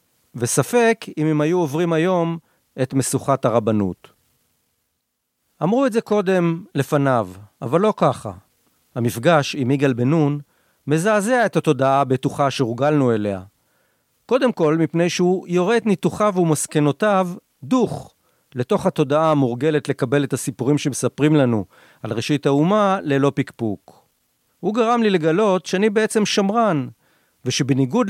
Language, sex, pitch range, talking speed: Hebrew, male, 130-190 Hz, 125 wpm